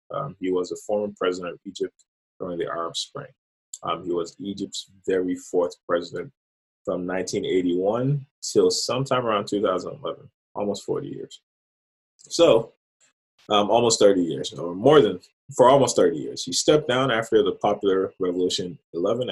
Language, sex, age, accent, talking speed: English, male, 20-39, American, 150 wpm